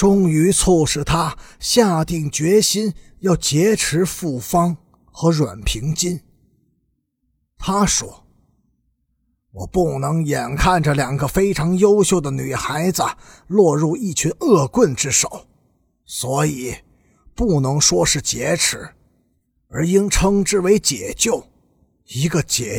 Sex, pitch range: male, 140-185 Hz